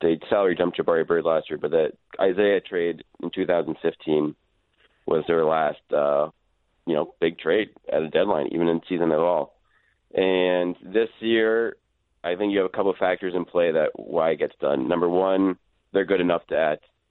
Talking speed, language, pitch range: 190 wpm, English, 85-115 Hz